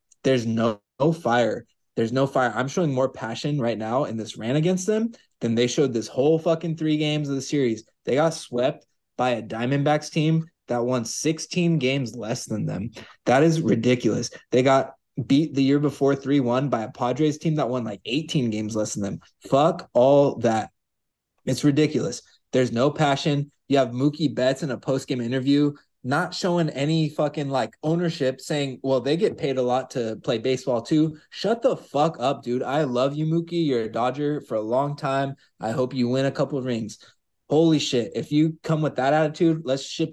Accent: American